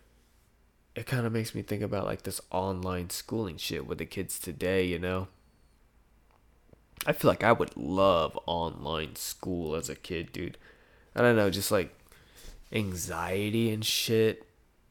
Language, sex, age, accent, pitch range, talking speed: English, male, 20-39, American, 95-110 Hz, 155 wpm